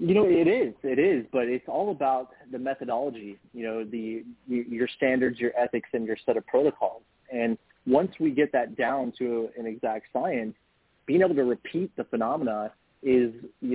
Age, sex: 30-49, male